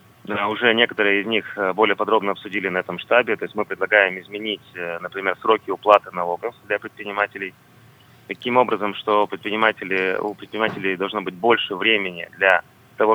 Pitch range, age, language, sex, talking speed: 90-105 Hz, 20-39, Russian, male, 155 wpm